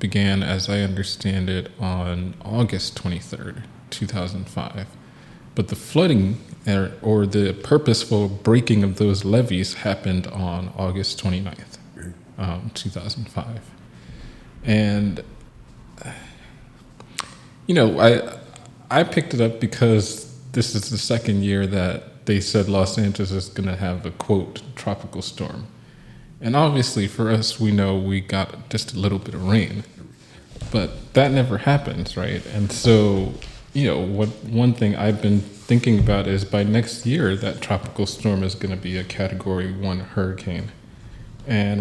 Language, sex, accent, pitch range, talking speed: English, male, American, 95-115 Hz, 140 wpm